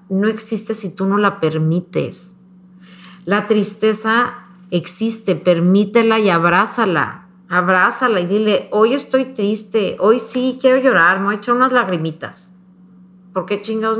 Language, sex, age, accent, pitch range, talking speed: Spanish, female, 40-59, Mexican, 185-235 Hz, 135 wpm